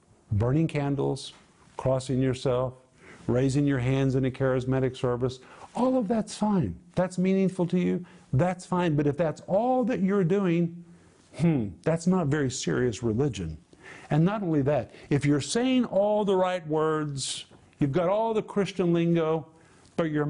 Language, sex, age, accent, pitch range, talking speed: English, male, 50-69, American, 140-180 Hz, 155 wpm